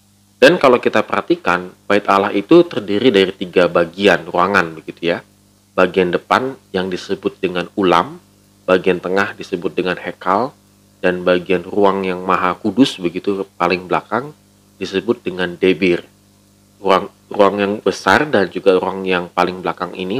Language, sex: Indonesian, male